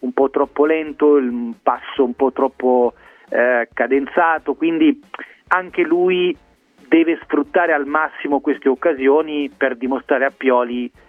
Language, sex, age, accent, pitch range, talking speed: Italian, male, 40-59, native, 130-160 Hz, 130 wpm